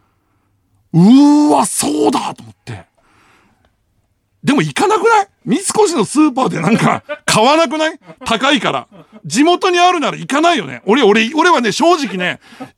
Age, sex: 60-79, male